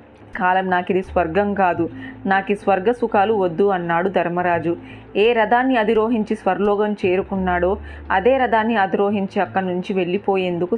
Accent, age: native, 20-39